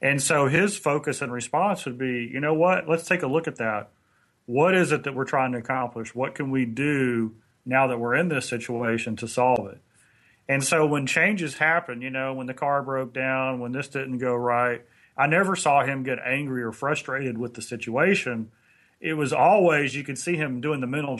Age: 40-59